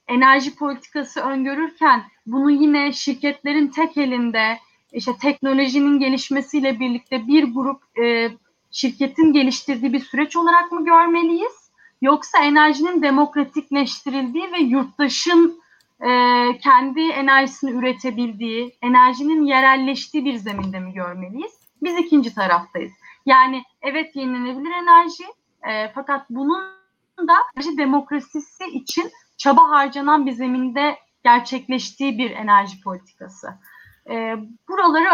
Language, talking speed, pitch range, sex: Turkish, 95 wpm, 245-305 Hz, female